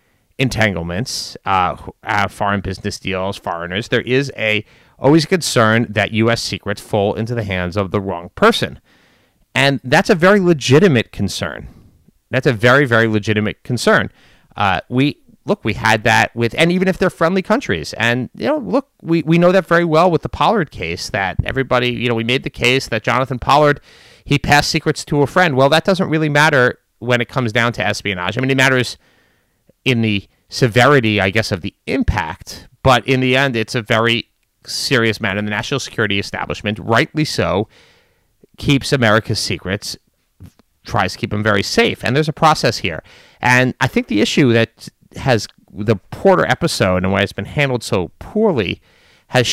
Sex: male